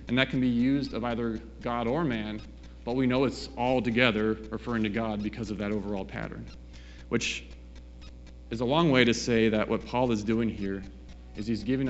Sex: male